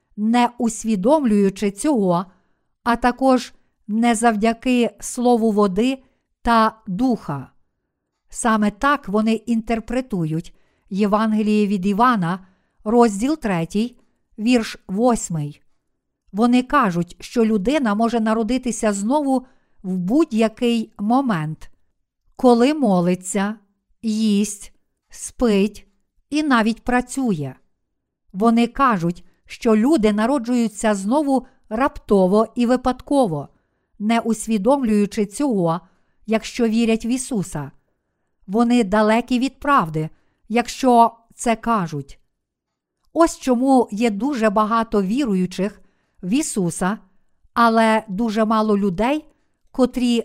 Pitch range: 200-245 Hz